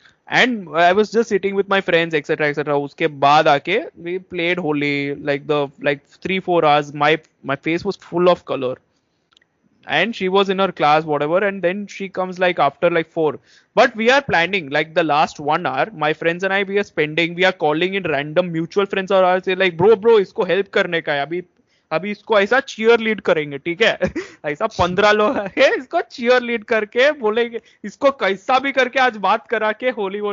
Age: 20-39